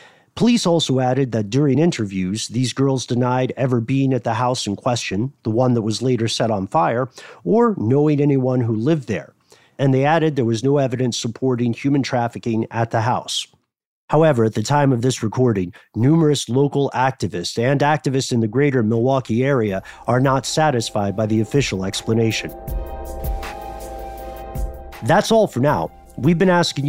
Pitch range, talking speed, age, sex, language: 115-165 Hz, 165 wpm, 40-59, male, English